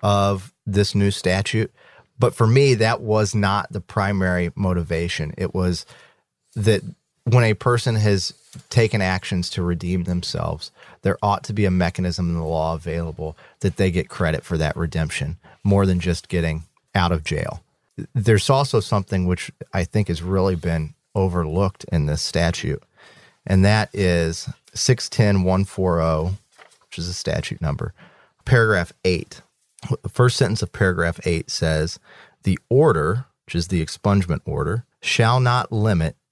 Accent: American